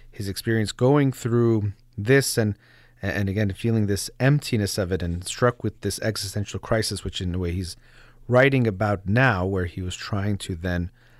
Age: 30-49